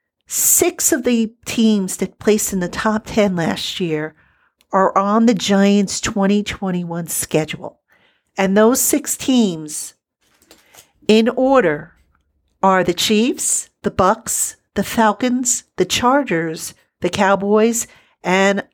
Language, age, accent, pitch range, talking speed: English, 50-69, American, 175-220 Hz, 115 wpm